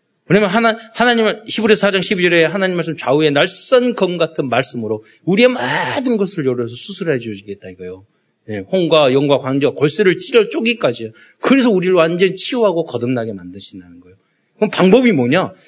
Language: Korean